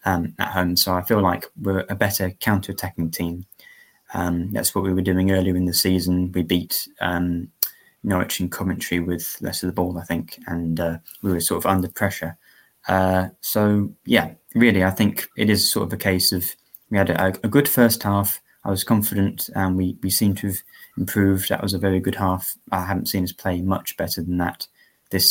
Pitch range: 90-100 Hz